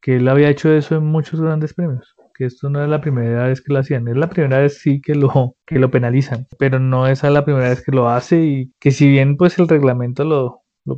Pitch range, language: 125-145 Hz, Spanish